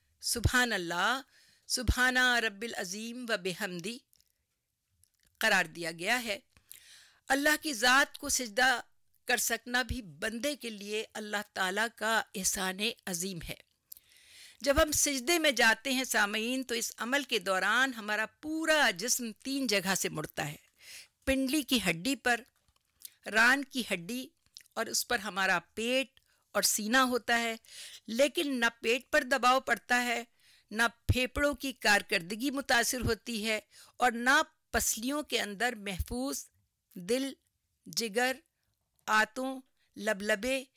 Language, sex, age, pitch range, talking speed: Urdu, female, 50-69, 210-265 Hz, 125 wpm